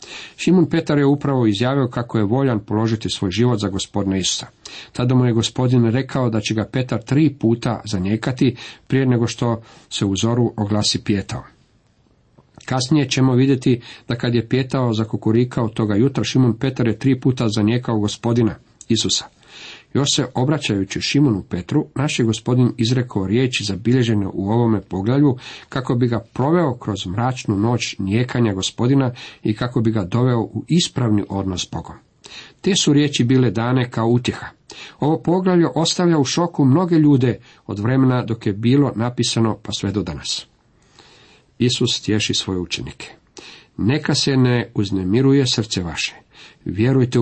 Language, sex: Croatian, male